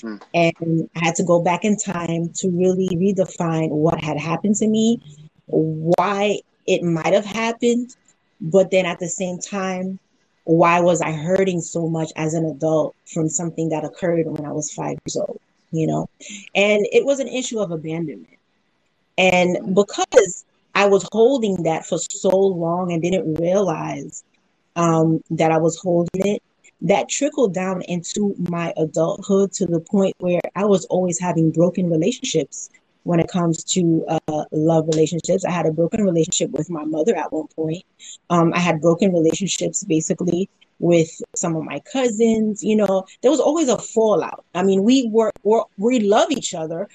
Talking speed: 170 wpm